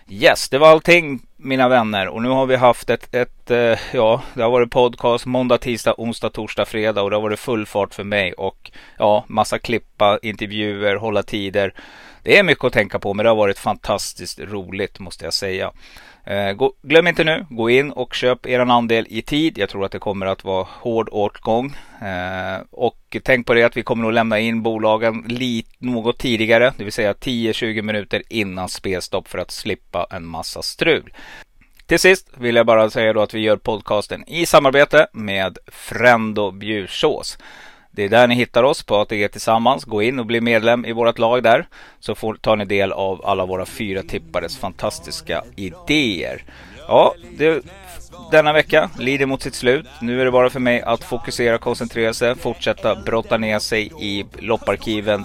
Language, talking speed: Swedish, 190 wpm